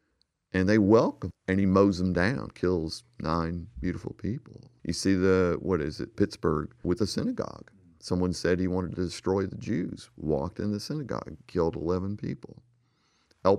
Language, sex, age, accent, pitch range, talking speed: English, male, 50-69, American, 90-120 Hz, 170 wpm